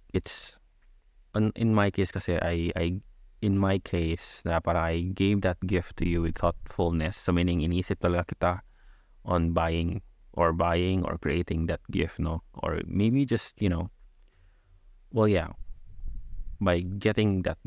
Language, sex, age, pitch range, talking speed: Filipino, male, 20-39, 85-100 Hz, 145 wpm